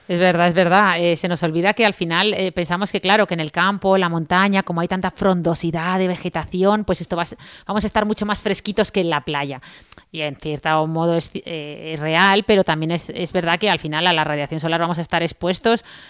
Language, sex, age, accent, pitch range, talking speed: Spanish, female, 30-49, Spanish, 170-200 Hz, 235 wpm